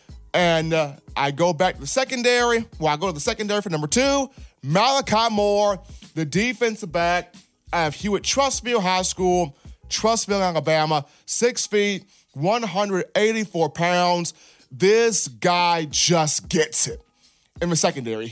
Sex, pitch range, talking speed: male, 170-230 Hz, 140 wpm